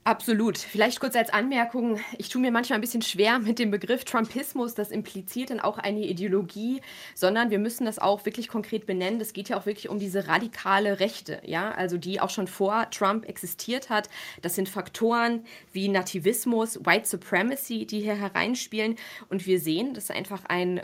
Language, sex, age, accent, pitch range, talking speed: German, female, 20-39, German, 190-230 Hz, 185 wpm